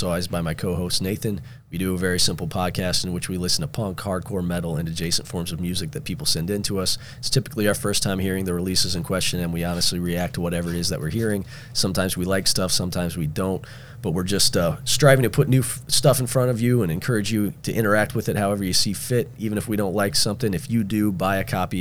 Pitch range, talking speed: 90-110 Hz, 255 wpm